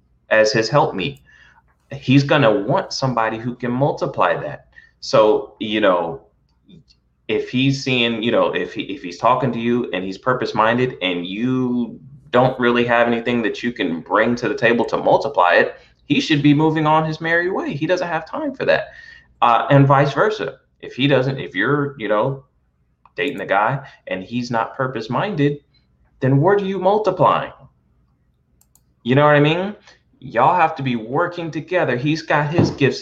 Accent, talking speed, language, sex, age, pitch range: American, 180 wpm, English, male, 20-39, 120-145 Hz